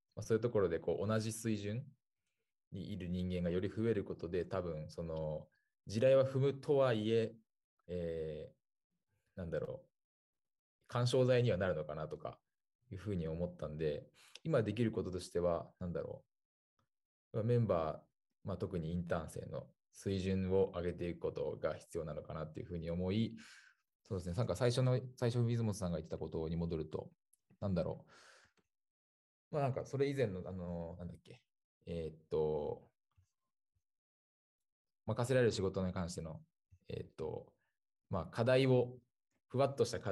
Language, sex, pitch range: Japanese, male, 85-115 Hz